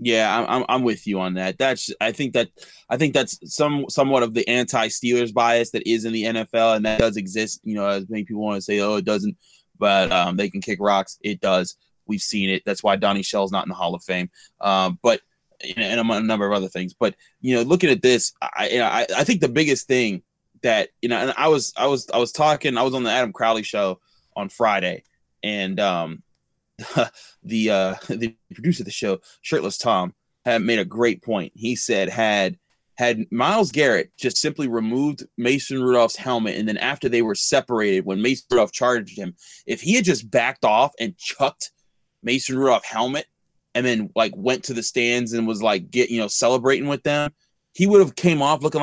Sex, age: male, 20-39